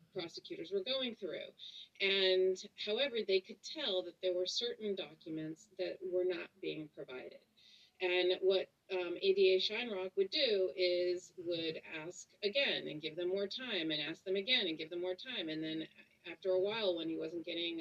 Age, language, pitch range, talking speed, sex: 40-59, English, 175-205 Hz, 180 wpm, female